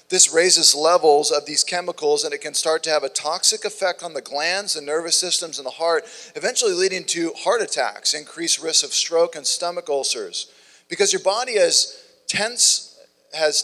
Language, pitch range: English, 115-175 Hz